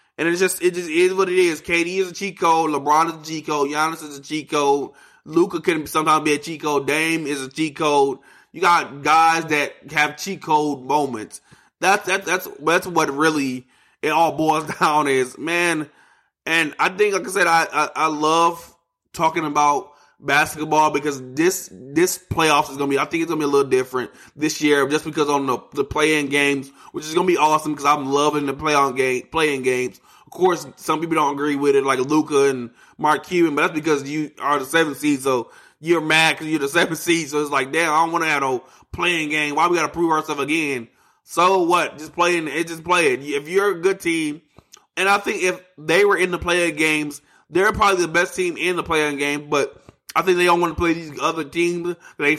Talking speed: 230 wpm